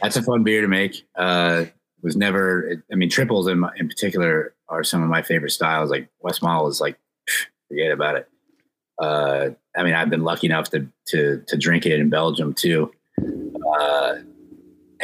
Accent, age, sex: American, 30-49, male